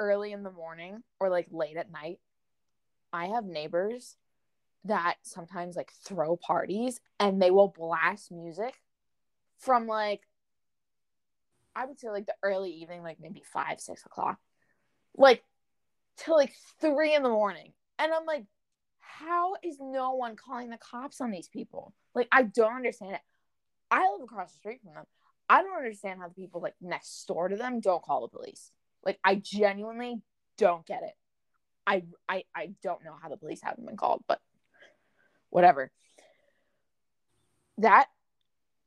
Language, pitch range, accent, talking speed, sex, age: English, 175-240 Hz, American, 160 wpm, female, 20-39